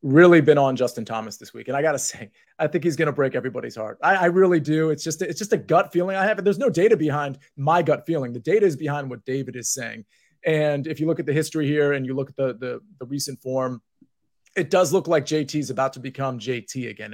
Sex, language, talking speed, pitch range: male, English, 260 wpm, 135-170 Hz